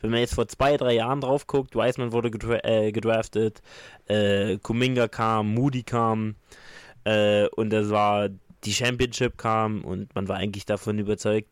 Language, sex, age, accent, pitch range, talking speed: German, male, 20-39, German, 105-120 Hz, 165 wpm